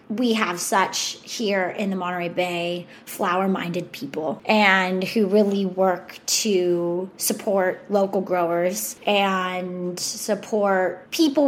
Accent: American